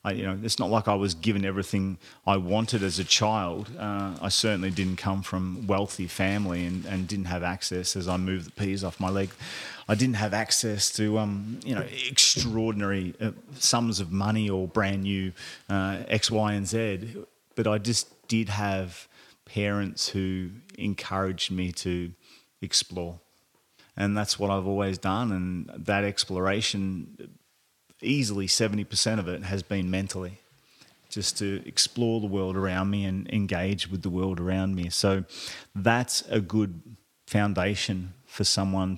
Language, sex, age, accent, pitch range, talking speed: English, male, 30-49, Australian, 95-105 Hz, 160 wpm